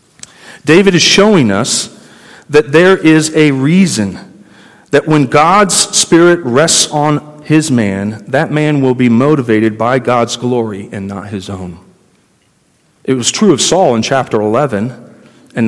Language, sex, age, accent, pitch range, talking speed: English, male, 40-59, American, 115-165 Hz, 145 wpm